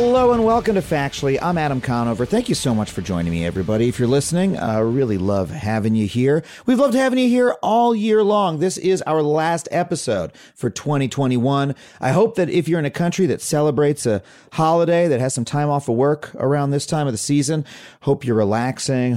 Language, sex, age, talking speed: English, male, 40-59, 215 wpm